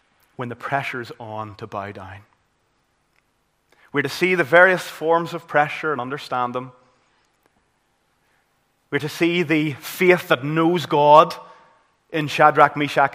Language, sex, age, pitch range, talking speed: English, male, 30-49, 120-145 Hz, 130 wpm